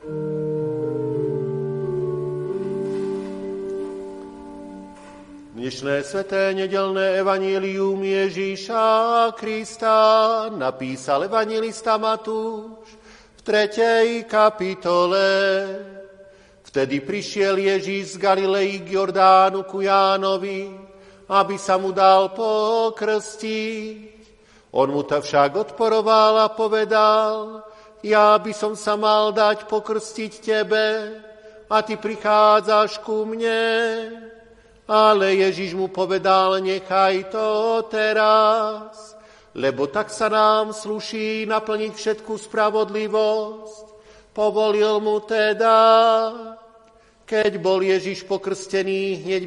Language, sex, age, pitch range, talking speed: Slovak, male, 50-69, 190-220 Hz, 80 wpm